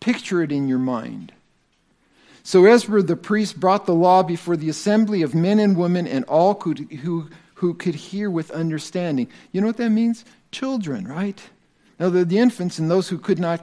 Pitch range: 165-205 Hz